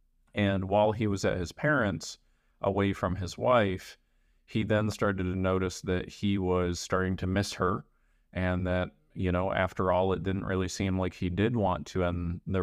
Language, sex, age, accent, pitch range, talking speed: English, male, 30-49, American, 90-105 Hz, 190 wpm